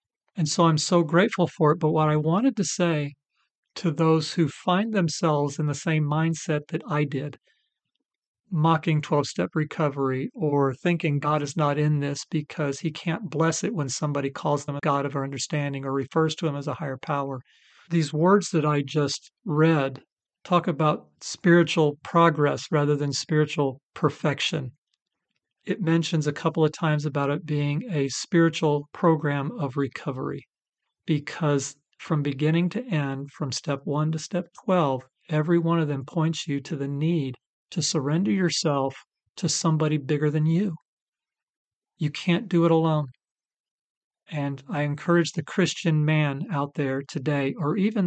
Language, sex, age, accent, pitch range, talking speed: English, male, 40-59, American, 145-165 Hz, 160 wpm